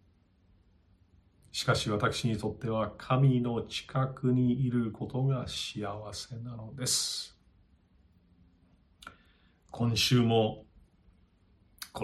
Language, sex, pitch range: Japanese, male, 95-105 Hz